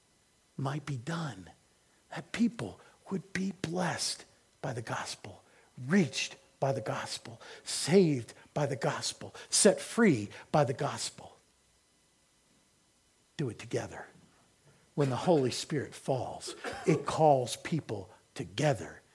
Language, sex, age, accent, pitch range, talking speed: English, male, 50-69, American, 135-200 Hz, 115 wpm